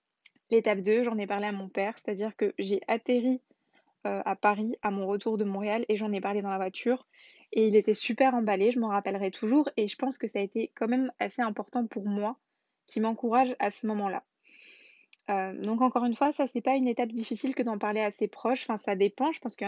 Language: French